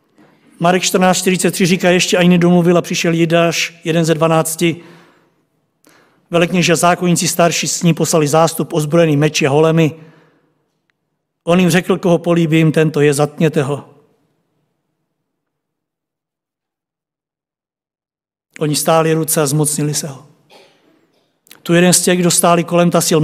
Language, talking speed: Czech, 120 wpm